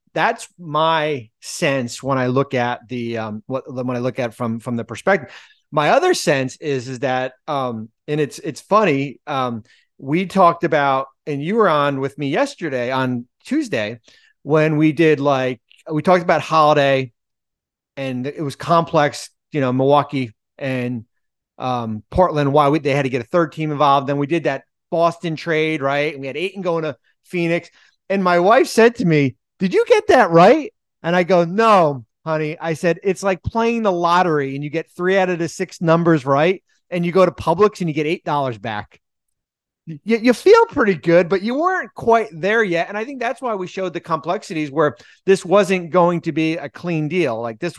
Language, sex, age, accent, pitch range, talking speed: English, male, 30-49, American, 135-180 Hz, 200 wpm